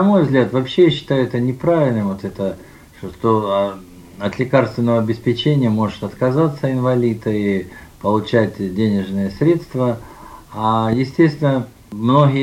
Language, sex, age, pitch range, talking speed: Russian, male, 50-69, 105-135 Hz, 115 wpm